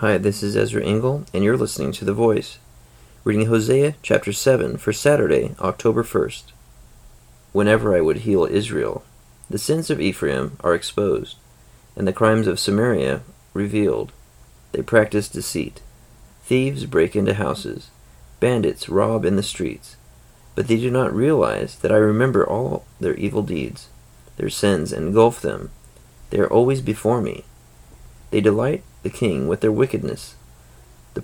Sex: male